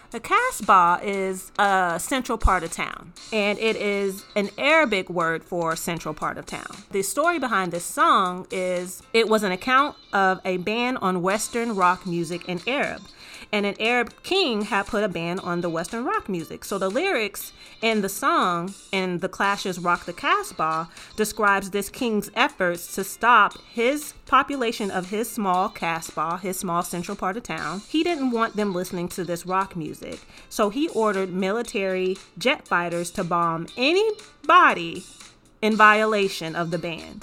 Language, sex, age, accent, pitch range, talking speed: English, female, 30-49, American, 185-260 Hz, 170 wpm